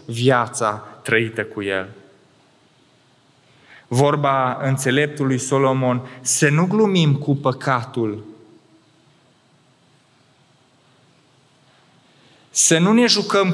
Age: 20-39